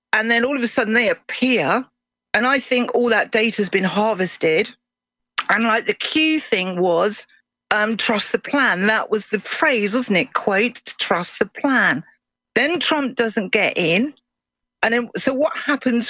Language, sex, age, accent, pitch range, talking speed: English, female, 40-59, British, 215-255 Hz, 175 wpm